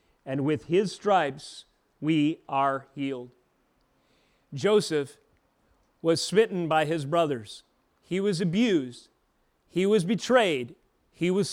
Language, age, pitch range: English, 40-59, 145-195 Hz